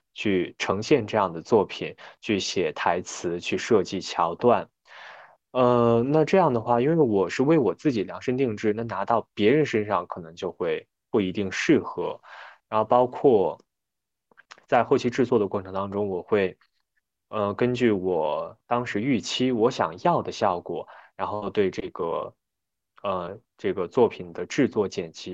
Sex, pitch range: male, 100-125 Hz